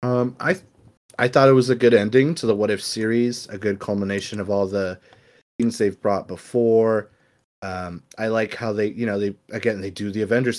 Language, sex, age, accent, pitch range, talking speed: English, male, 30-49, American, 100-125 Hz, 210 wpm